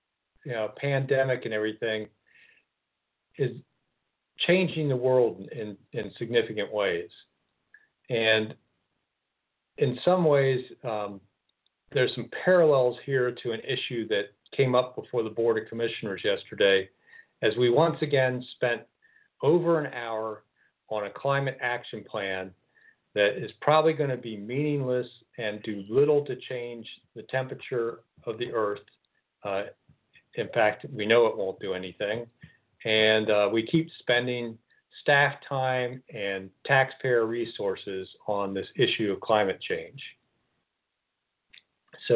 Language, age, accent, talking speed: English, 50-69, American, 130 wpm